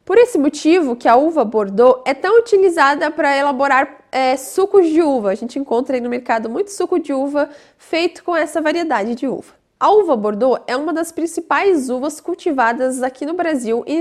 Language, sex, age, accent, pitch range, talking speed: Portuguese, female, 10-29, Brazilian, 255-350 Hz, 195 wpm